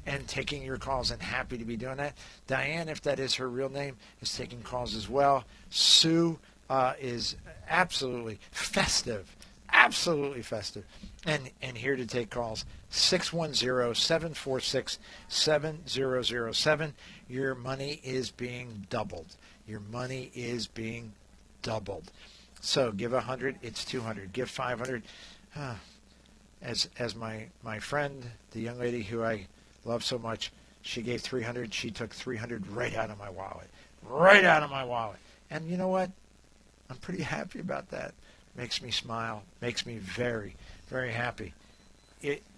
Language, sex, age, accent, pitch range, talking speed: English, male, 50-69, American, 110-135 Hz, 160 wpm